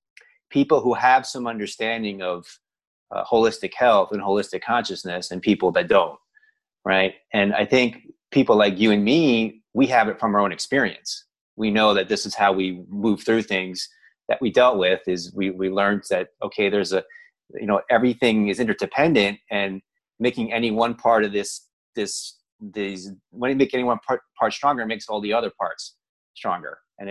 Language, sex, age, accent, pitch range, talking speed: English, male, 30-49, American, 95-115 Hz, 185 wpm